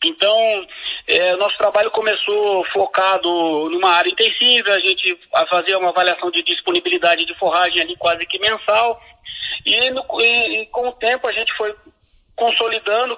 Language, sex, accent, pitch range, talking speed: Portuguese, male, Brazilian, 180-265 Hz, 155 wpm